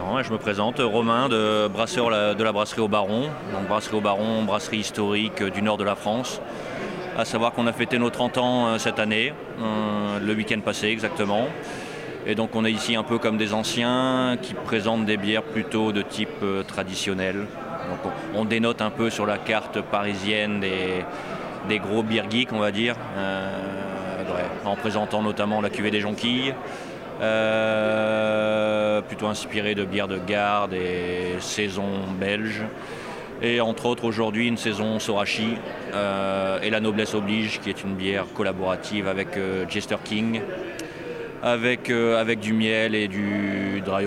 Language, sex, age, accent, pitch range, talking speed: French, male, 30-49, French, 100-110 Hz, 160 wpm